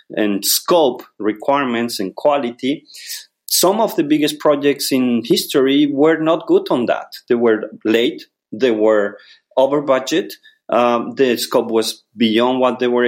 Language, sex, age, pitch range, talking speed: English, male, 40-59, 120-190 Hz, 145 wpm